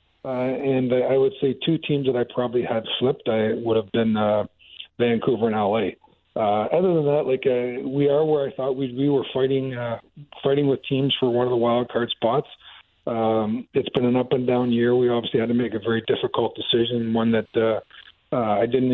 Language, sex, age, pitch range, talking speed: English, male, 40-59, 115-130 Hz, 220 wpm